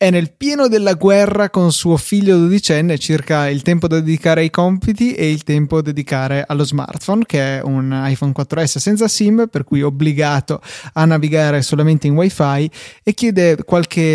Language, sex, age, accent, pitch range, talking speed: Italian, male, 20-39, native, 145-175 Hz, 180 wpm